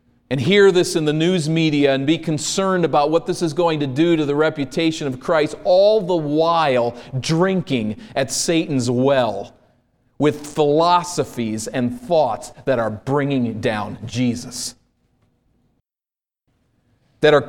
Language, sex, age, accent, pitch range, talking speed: English, male, 40-59, American, 115-145 Hz, 135 wpm